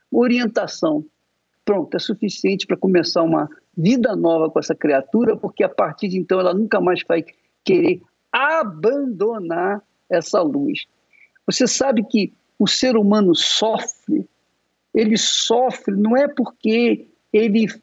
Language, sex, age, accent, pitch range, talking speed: Portuguese, male, 60-79, Brazilian, 205-285 Hz, 130 wpm